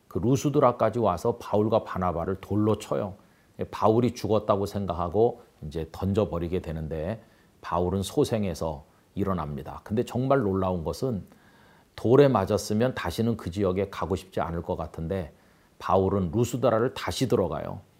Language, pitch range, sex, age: Korean, 85-110 Hz, male, 40-59